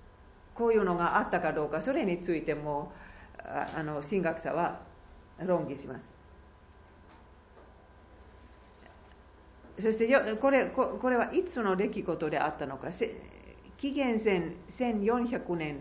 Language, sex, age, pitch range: Japanese, female, 50-69, 130-210 Hz